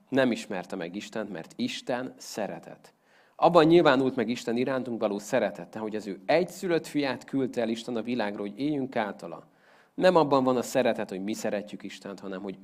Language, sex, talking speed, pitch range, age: Hungarian, male, 180 wpm, 105-145 Hz, 40-59